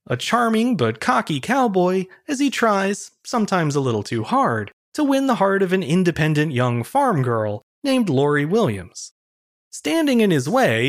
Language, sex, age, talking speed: English, male, 30-49, 165 wpm